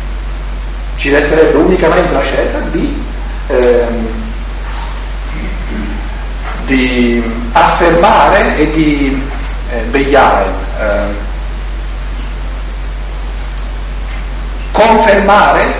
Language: Italian